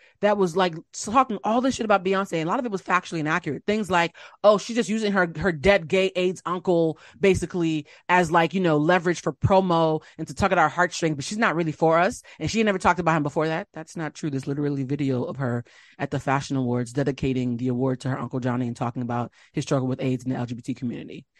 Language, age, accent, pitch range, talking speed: English, 30-49, American, 150-210 Hz, 245 wpm